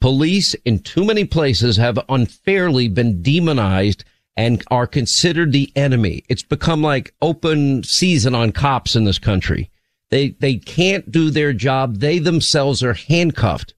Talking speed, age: 150 wpm, 50-69